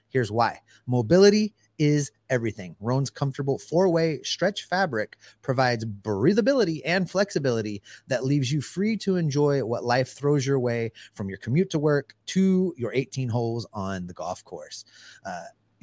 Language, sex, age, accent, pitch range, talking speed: English, male, 30-49, American, 115-150 Hz, 150 wpm